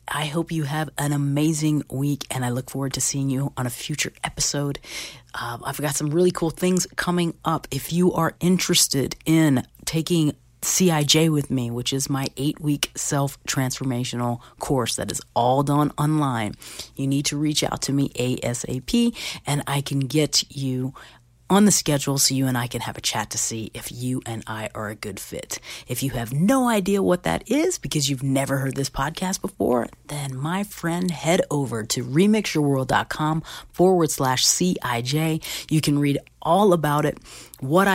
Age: 40-59